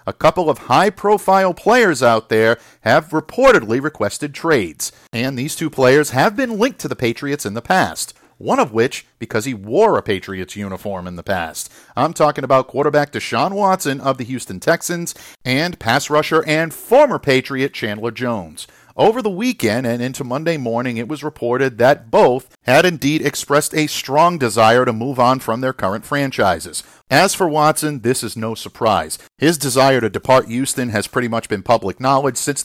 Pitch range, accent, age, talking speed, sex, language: 115-155 Hz, American, 50-69, 180 wpm, male, English